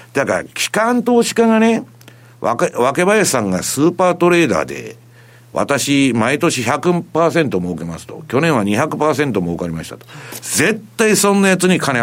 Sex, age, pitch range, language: male, 60-79, 115-185 Hz, Japanese